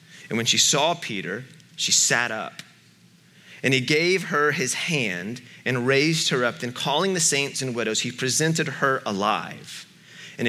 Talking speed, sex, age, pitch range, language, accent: 165 wpm, male, 30-49, 110-145 Hz, English, American